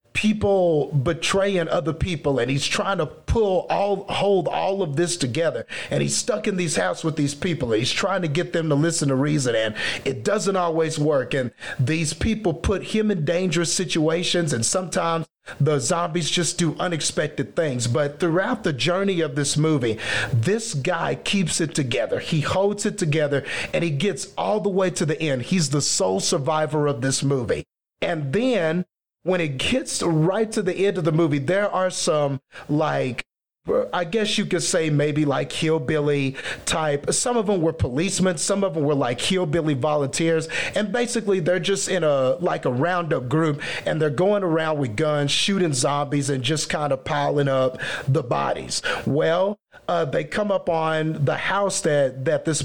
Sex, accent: male, American